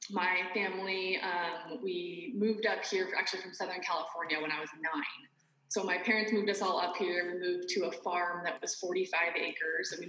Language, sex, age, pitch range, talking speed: English, female, 20-39, 175-235 Hz, 200 wpm